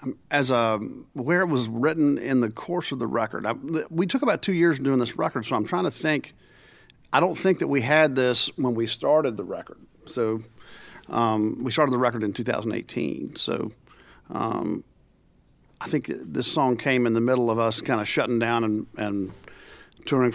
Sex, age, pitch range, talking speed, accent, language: male, 50-69, 110-130 Hz, 190 wpm, American, English